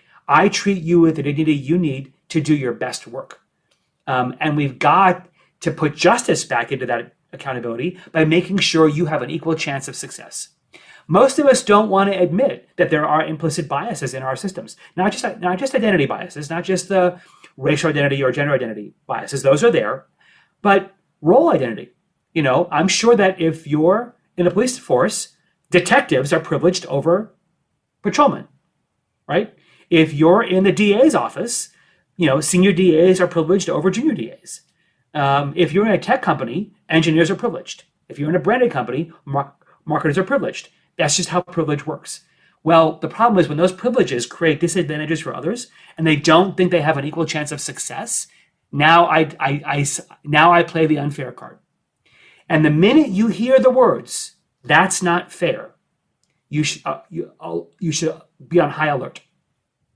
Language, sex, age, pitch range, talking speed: English, male, 30-49, 150-185 Hz, 180 wpm